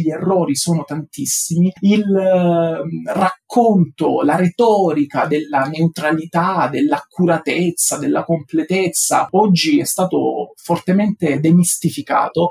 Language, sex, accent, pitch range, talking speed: Italian, male, native, 160-205 Hz, 90 wpm